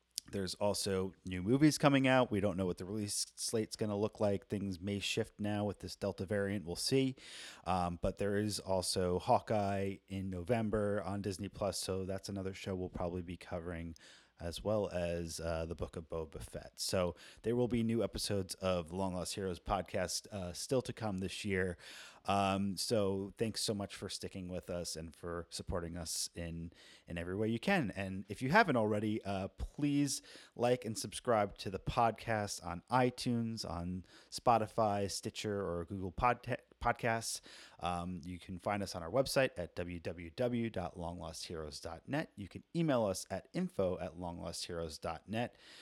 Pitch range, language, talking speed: 90-110 Hz, English, 170 wpm